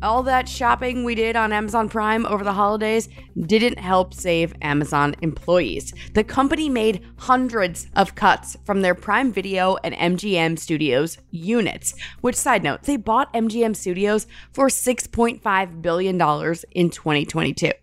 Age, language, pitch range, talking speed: 20-39, English, 170-225 Hz, 140 wpm